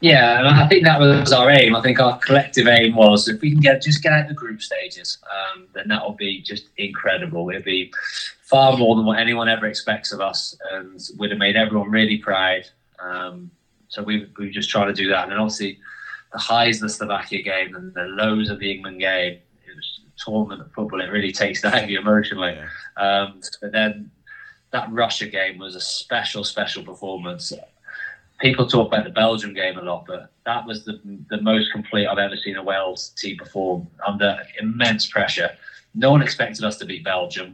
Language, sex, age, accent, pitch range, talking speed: English, male, 20-39, British, 95-115 Hz, 210 wpm